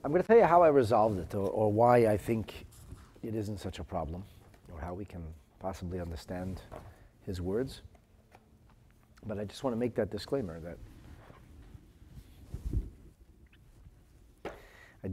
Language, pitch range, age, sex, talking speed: English, 90-115 Hz, 40-59, male, 145 wpm